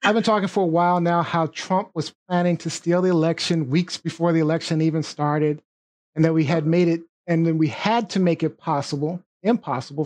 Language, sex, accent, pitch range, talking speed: English, male, American, 160-195 Hz, 215 wpm